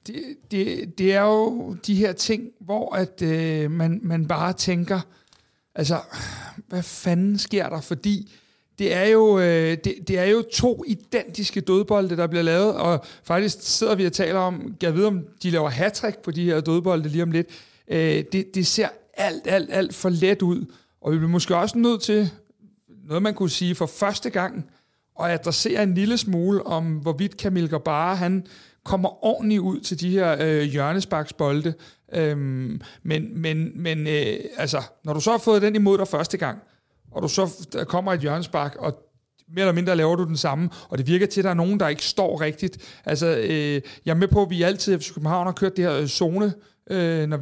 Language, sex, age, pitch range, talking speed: Danish, male, 60-79, 160-195 Hz, 200 wpm